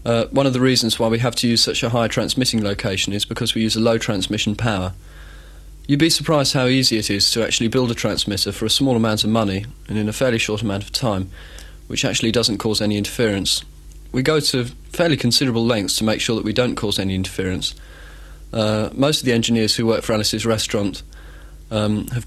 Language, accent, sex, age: English, British, male, 30-49